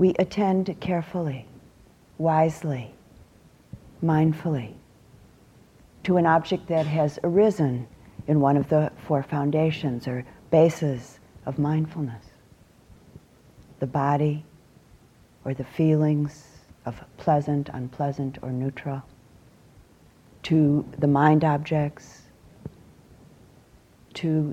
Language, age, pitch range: English, 50-69, 135-170 Hz